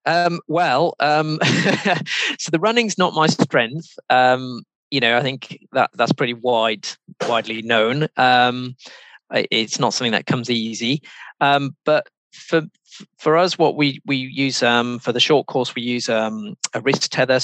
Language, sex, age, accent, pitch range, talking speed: English, male, 20-39, British, 110-140 Hz, 160 wpm